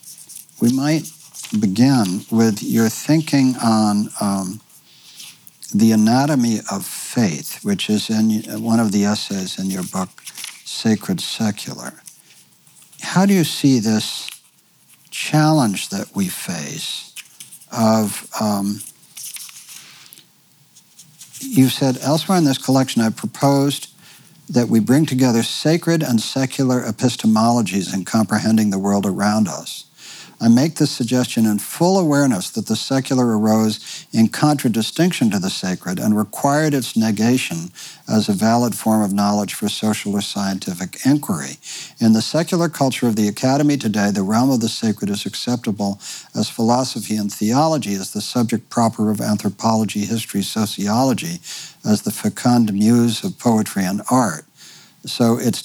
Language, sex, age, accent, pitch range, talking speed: English, male, 60-79, American, 110-150 Hz, 135 wpm